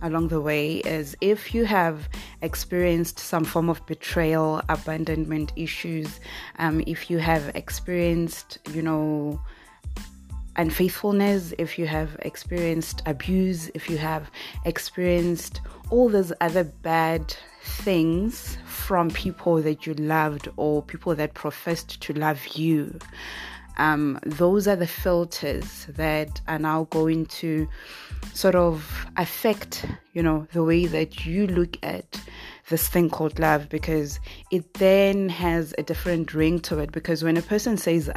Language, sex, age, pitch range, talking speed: English, female, 20-39, 155-175 Hz, 135 wpm